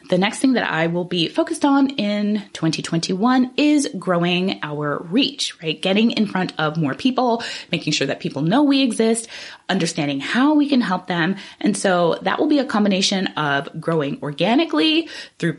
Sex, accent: female, American